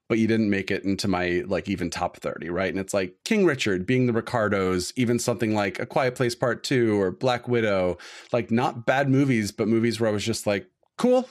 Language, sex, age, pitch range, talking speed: English, male, 30-49, 100-120 Hz, 230 wpm